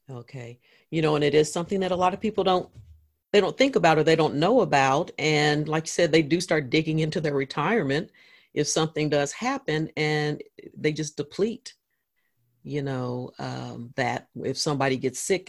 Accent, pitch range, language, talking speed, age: American, 145-185 Hz, English, 190 wpm, 40-59